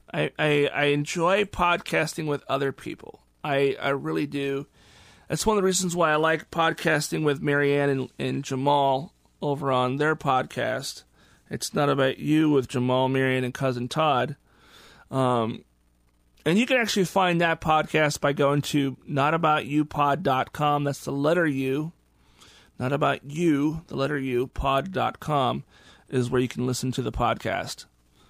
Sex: male